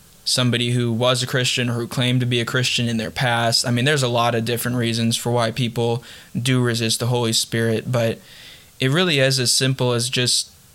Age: 10-29